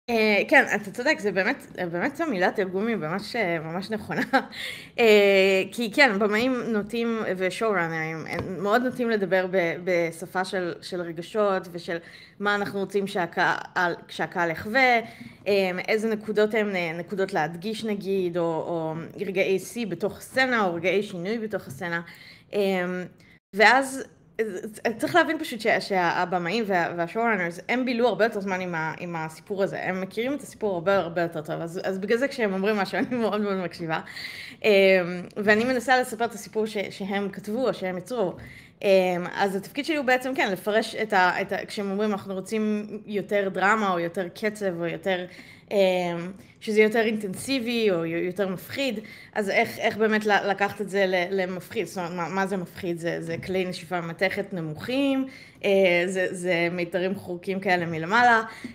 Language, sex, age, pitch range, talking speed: Hebrew, female, 20-39, 180-220 Hz, 145 wpm